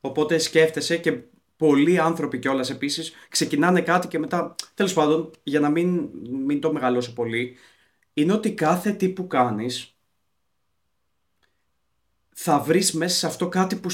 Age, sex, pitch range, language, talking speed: 30-49, male, 130-175 Hz, Greek, 140 wpm